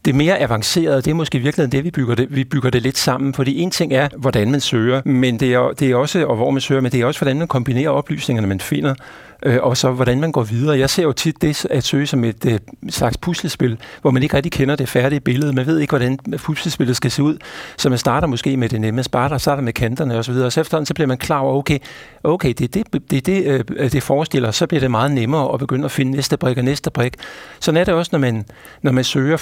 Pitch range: 120-150 Hz